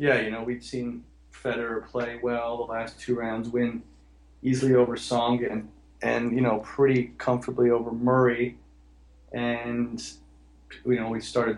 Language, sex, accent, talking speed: English, male, American, 150 wpm